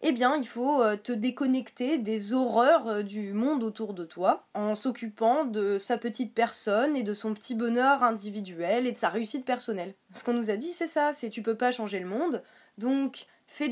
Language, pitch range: French, 225-295 Hz